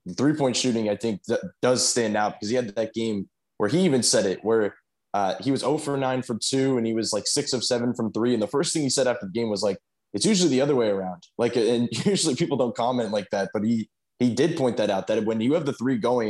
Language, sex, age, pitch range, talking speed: English, male, 20-39, 110-130 Hz, 280 wpm